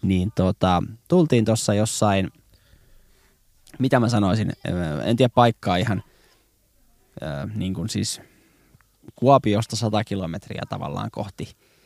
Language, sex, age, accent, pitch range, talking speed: Finnish, male, 20-39, native, 100-125 Hz, 95 wpm